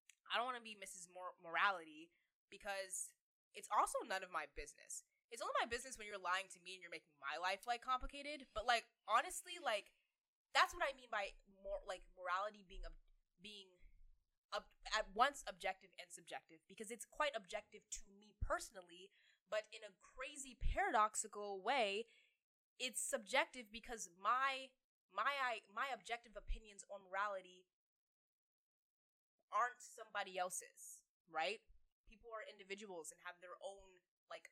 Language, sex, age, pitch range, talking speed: English, female, 10-29, 180-245 Hz, 145 wpm